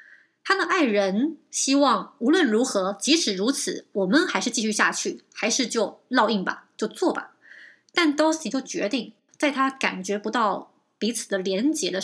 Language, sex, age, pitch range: Chinese, female, 20-39, 205-285 Hz